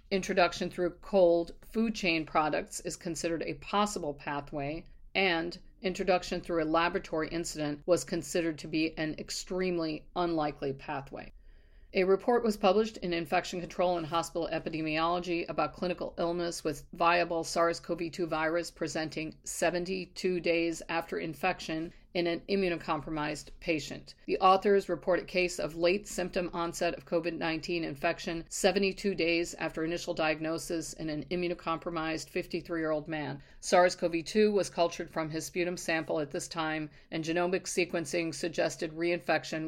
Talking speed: 140 wpm